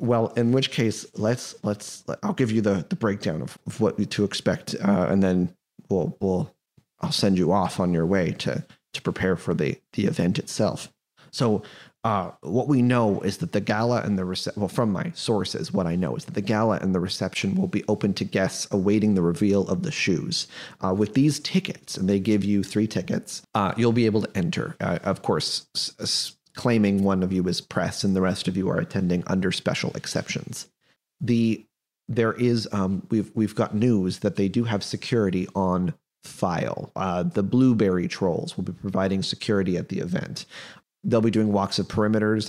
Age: 30-49